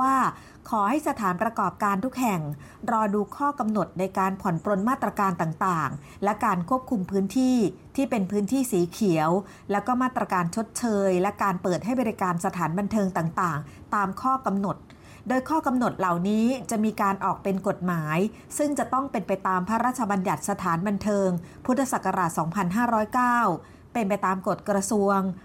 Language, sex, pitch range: Thai, female, 185-235 Hz